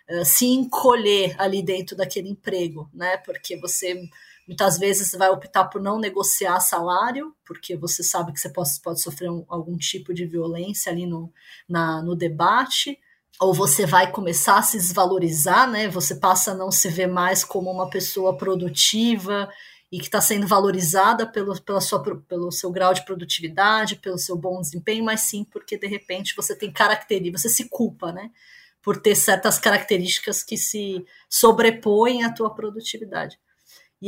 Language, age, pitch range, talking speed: Portuguese, 20-39, 180-215 Hz, 165 wpm